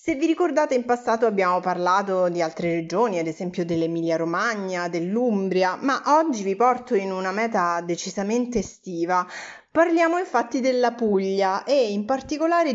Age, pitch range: 30-49, 185-250 Hz